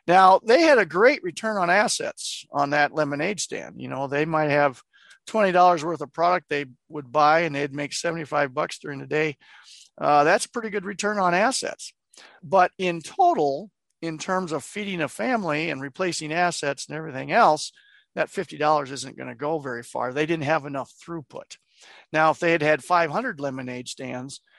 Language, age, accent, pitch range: English, 50-69, American, 145-185 Hz